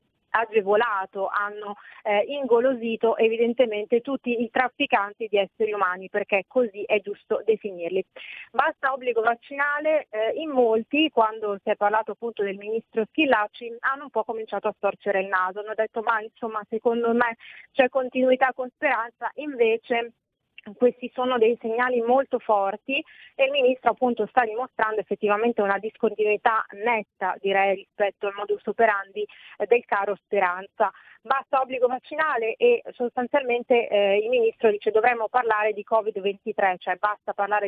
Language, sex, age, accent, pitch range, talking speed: Italian, female, 30-49, native, 205-240 Hz, 140 wpm